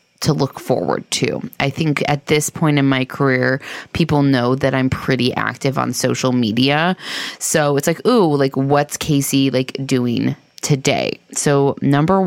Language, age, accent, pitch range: English, 20-39, American, 135-185 Hz